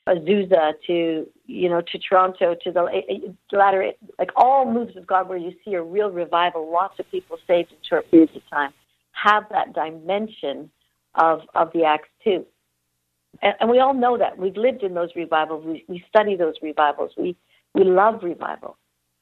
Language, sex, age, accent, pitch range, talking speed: English, female, 60-79, American, 165-220 Hz, 180 wpm